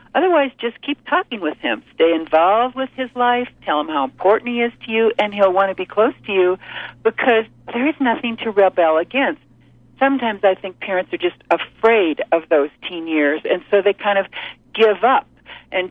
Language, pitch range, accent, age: English, 175-230 Hz, American, 60-79